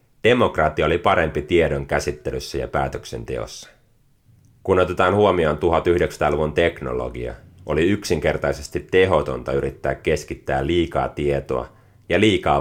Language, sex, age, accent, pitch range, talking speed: Finnish, male, 30-49, native, 70-115 Hz, 100 wpm